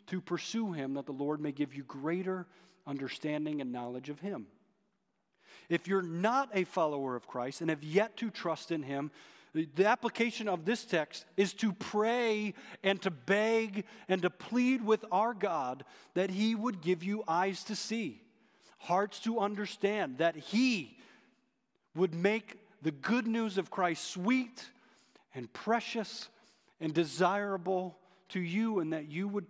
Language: English